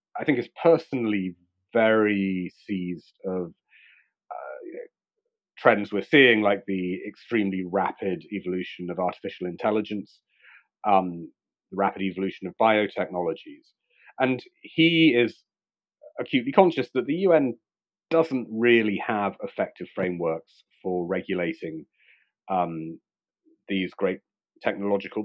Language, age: English, 40-59